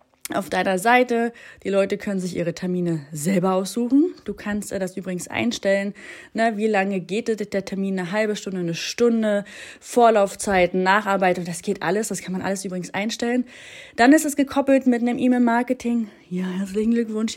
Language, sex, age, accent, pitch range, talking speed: German, female, 30-49, German, 180-245 Hz, 160 wpm